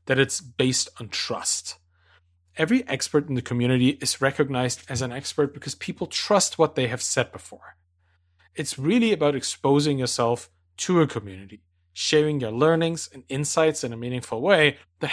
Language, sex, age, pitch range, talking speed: English, male, 30-49, 100-165 Hz, 165 wpm